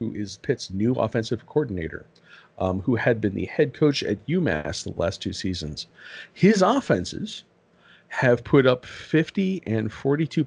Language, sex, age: English, male, 40-59